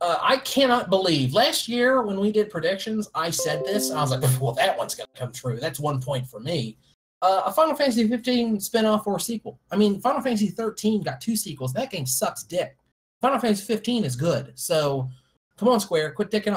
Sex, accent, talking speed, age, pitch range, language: male, American, 215 wpm, 30-49, 130-205 Hz, English